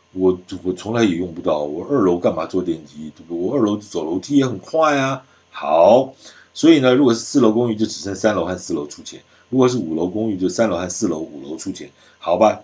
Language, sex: Chinese, male